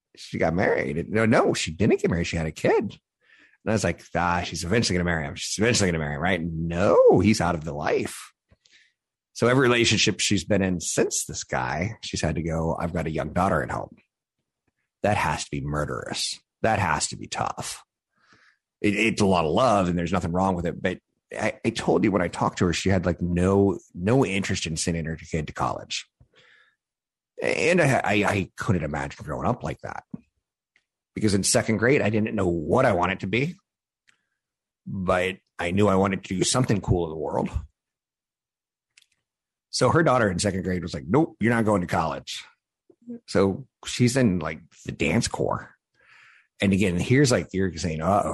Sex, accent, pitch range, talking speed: male, American, 85-110 Hz, 205 wpm